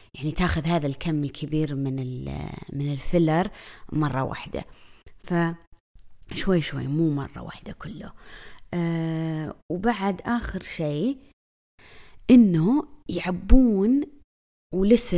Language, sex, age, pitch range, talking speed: Arabic, female, 20-39, 160-215 Hz, 95 wpm